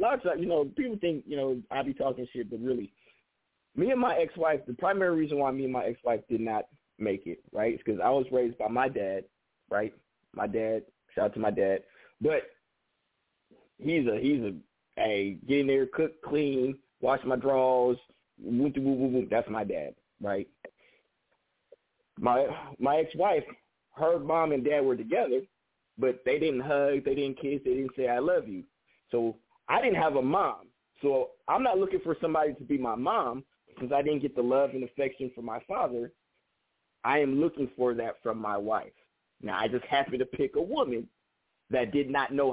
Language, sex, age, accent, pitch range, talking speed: English, male, 20-39, American, 125-165 Hz, 190 wpm